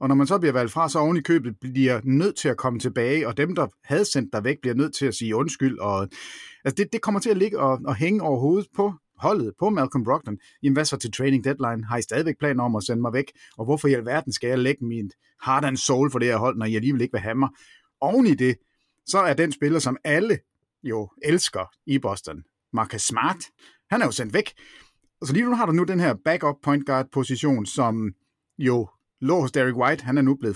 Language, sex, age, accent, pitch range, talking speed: Danish, male, 30-49, native, 115-150 Hz, 245 wpm